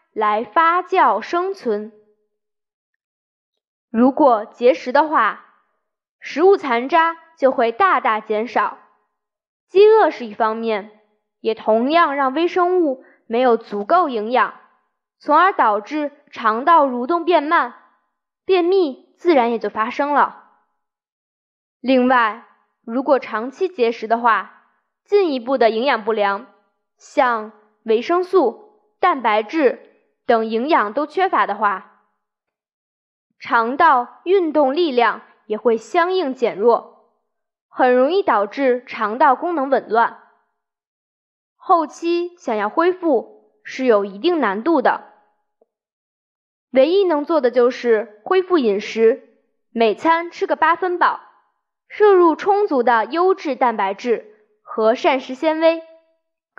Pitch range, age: 220-335 Hz, 20-39